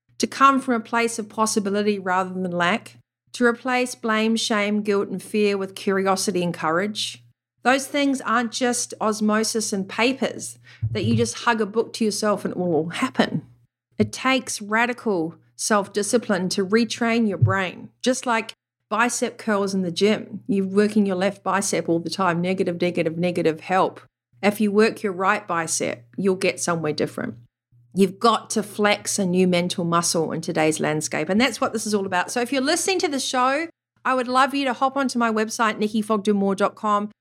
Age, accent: 40-59, Australian